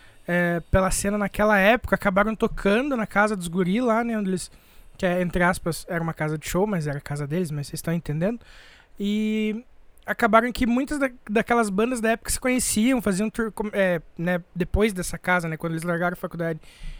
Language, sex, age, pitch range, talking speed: Portuguese, male, 20-39, 180-225 Hz, 200 wpm